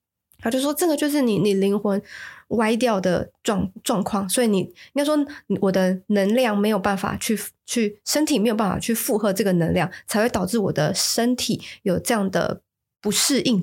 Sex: female